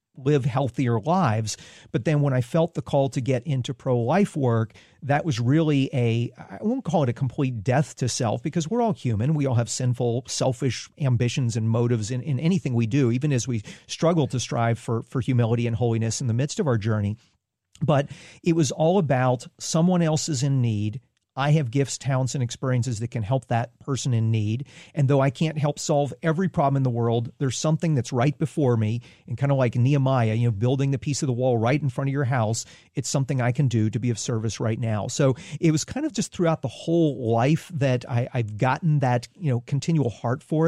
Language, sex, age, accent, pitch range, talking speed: English, male, 40-59, American, 120-150 Hz, 225 wpm